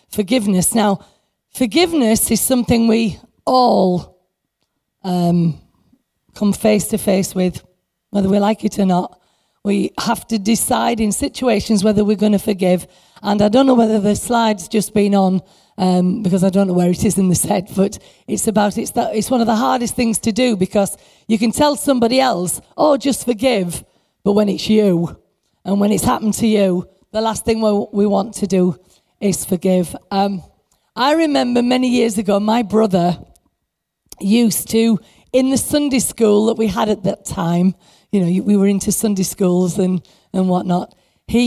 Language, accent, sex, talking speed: English, British, female, 180 wpm